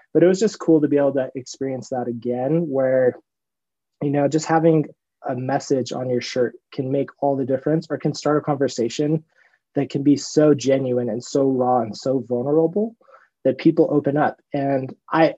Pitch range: 125-155 Hz